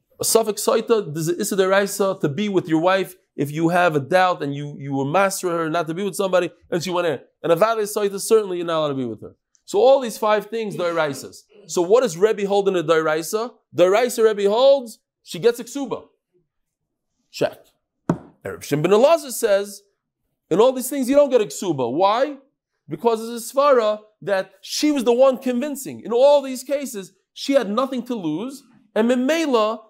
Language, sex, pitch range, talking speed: English, male, 180-250 Hz, 195 wpm